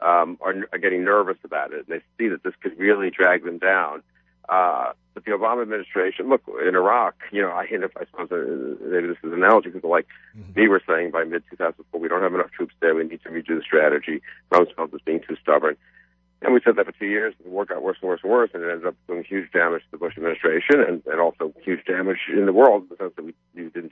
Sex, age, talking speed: male, 50-69, 245 wpm